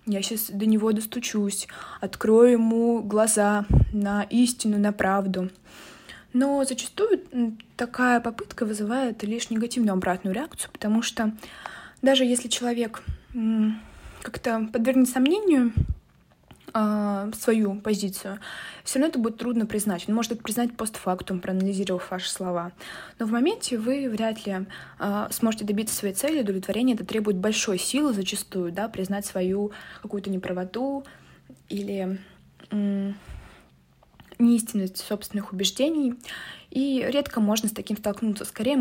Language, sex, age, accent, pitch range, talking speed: Russian, female, 20-39, native, 195-230 Hz, 120 wpm